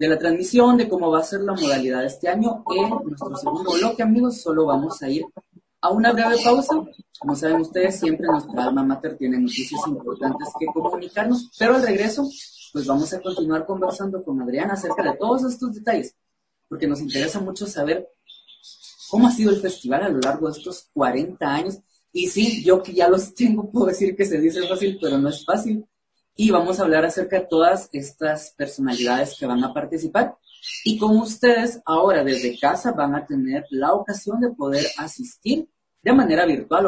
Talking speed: 190 wpm